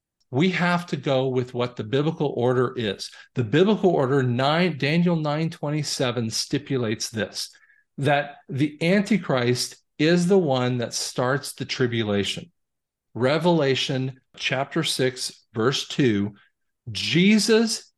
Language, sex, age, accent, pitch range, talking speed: English, male, 50-69, American, 135-190 Hz, 115 wpm